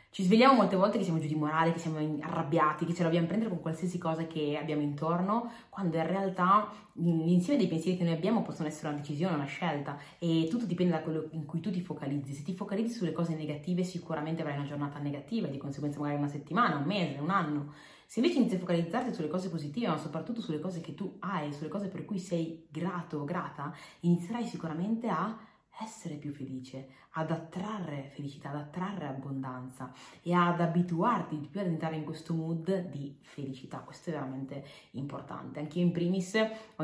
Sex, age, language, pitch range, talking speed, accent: female, 20-39, Italian, 150-190 Hz, 200 wpm, native